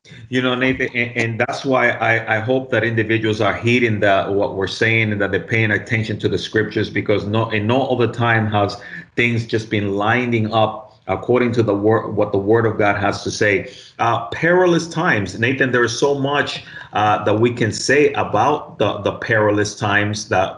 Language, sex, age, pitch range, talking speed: English, male, 30-49, 105-125 Hz, 200 wpm